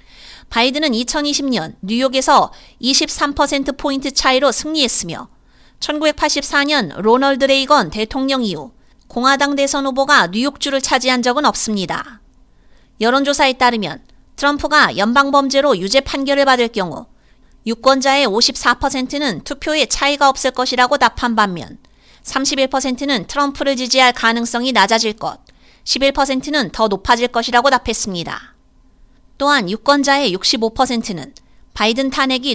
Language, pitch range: Korean, 235-280 Hz